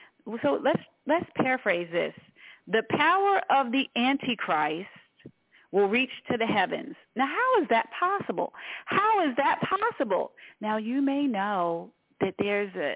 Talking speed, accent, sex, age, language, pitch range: 140 wpm, American, female, 40-59, English, 230-310 Hz